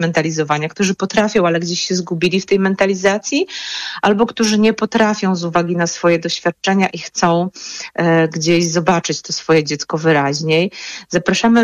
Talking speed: 145 wpm